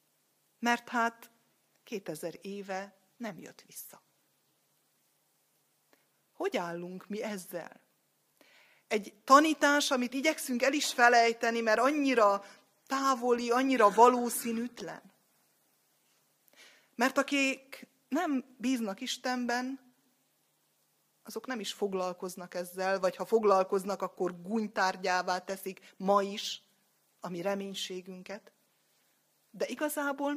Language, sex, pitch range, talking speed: Hungarian, female, 190-255 Hz, 90 wpm